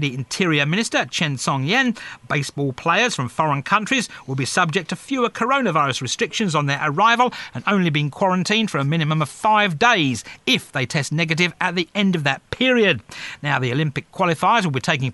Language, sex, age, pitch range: English, male, 40-59, 145-200 Hz